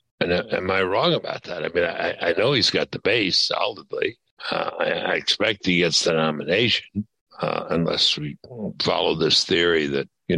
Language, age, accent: English, 60-79, American